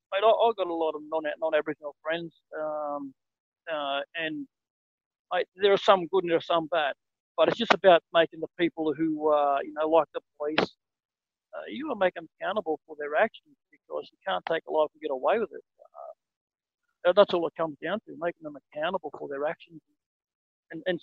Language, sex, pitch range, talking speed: English, male, 150-190 Hz, 210 wpm